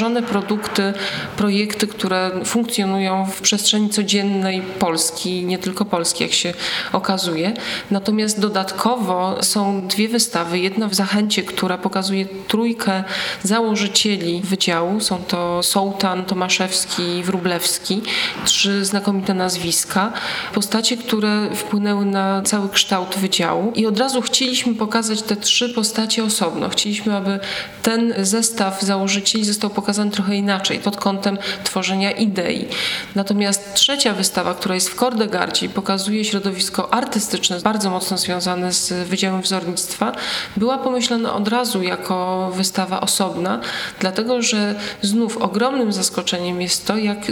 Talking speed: 125 wpm